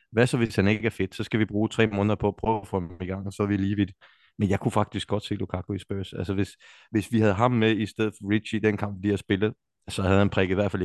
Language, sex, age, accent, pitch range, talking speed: Danish, male, 30-49, native, 90-105 Hz, 330 wpm